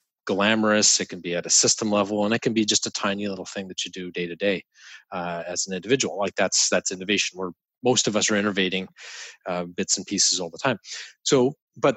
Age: 40-59